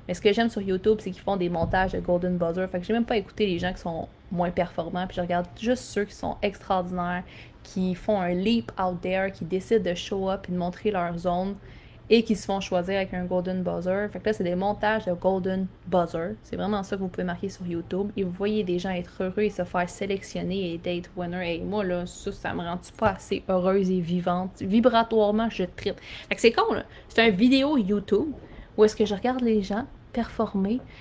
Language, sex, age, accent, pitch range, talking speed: English, female, 20-39, Canadian, 185-220 Hz, 240 wpm